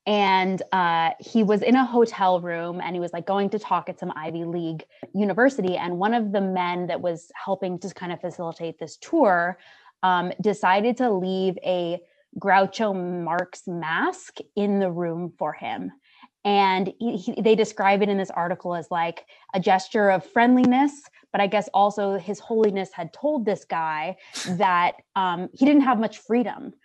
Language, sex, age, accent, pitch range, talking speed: English, female, 20-39, American, 175-210 Hz, 170 wpm